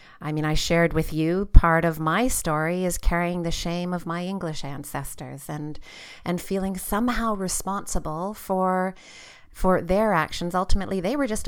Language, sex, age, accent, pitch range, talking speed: English, female, 40-59, American, 160-185 Hz, 160 wpm